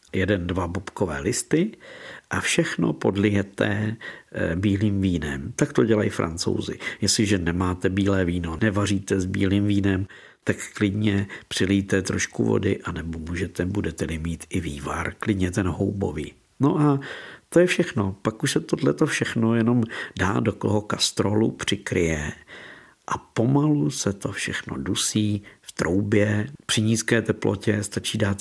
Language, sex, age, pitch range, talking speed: Czech, male, 50-69, 95-115 Hz, 135 wpm